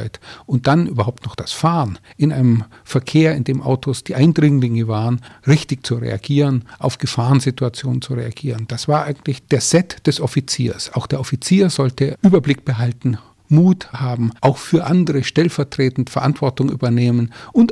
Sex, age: male, 50-69